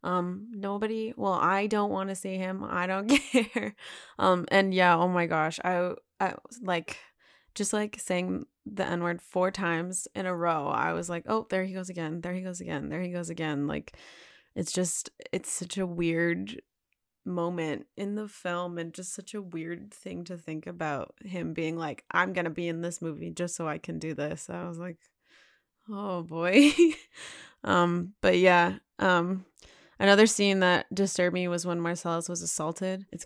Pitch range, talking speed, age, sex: 170-190 Hz, 185 wpm, 20-39, female